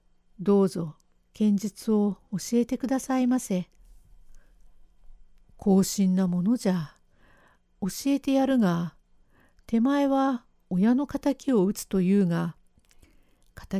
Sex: female